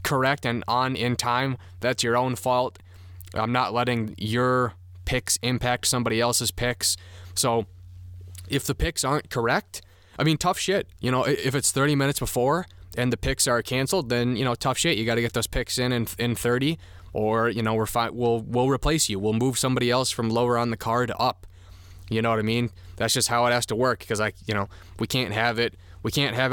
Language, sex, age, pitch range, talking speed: English, male, 20-39, 100-125 Hz, 215 wpm